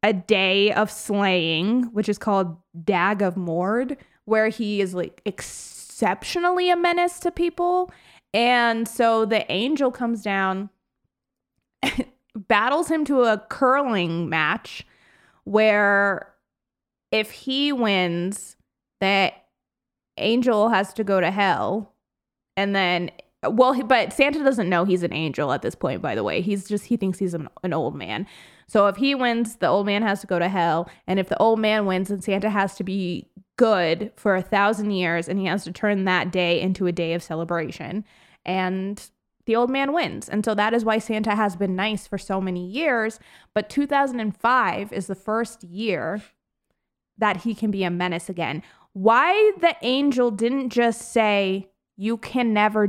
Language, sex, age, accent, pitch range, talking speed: English, female, 20-39, American, 185-230 Hz, 165 wpm